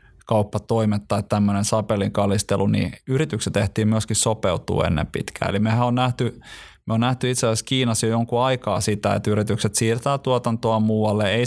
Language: Finnish